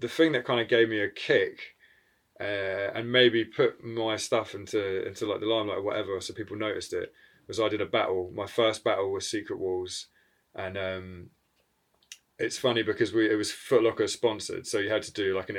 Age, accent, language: 20-39, British, English